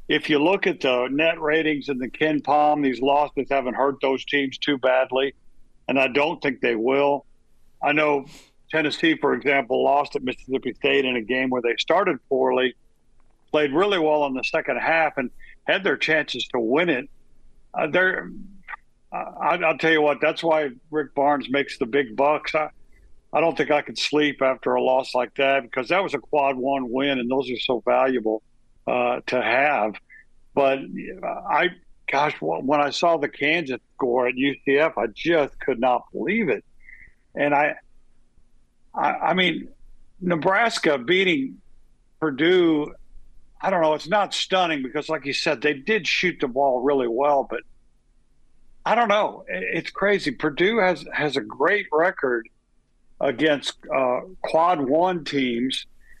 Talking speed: 165 wpm